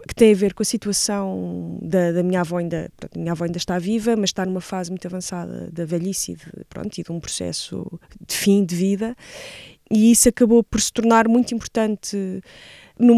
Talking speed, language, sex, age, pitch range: 195 wpm, Portuguese, female, 20-39, 180-210 Hz